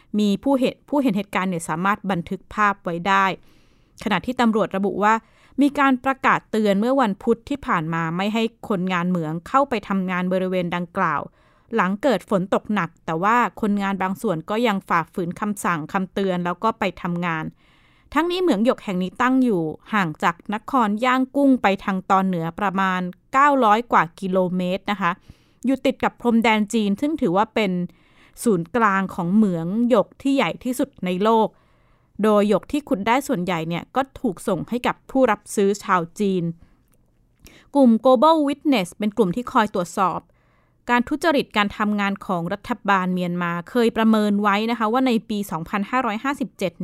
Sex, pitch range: female, 185-235 Hz